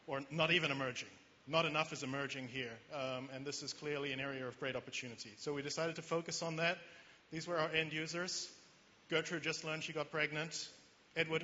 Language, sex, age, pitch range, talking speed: English, male, 40-59, 140-160 Hz, 200 wpm